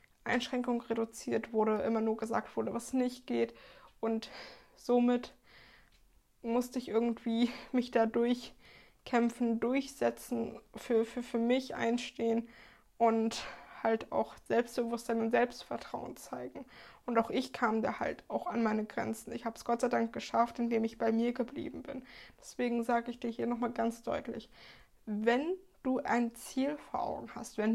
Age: 20-39